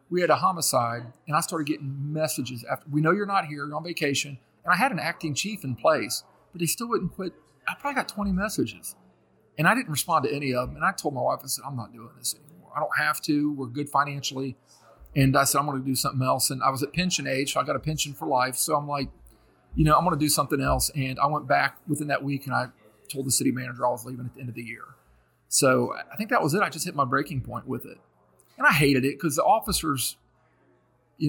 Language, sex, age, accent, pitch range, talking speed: English, male, 40-59, American, 135-180 Hz, 270 wpm